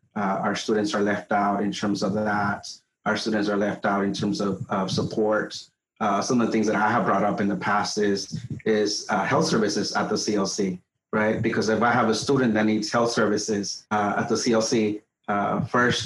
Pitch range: 105-115 Hz